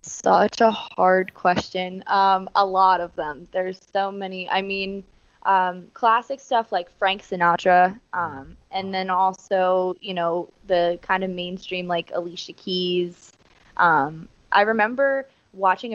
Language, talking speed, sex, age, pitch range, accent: English, 140 wpm, female, 20-39, 175-195 Hz, American